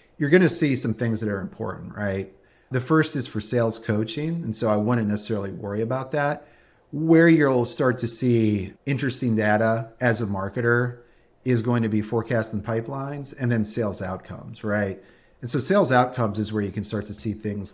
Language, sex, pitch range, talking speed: English, male, 105-125 Hz, 190 wpm